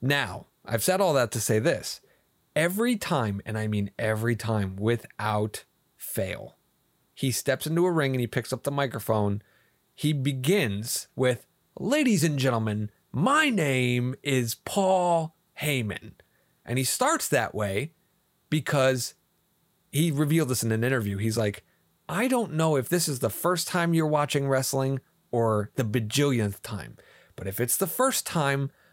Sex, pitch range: male, 115-180 Hz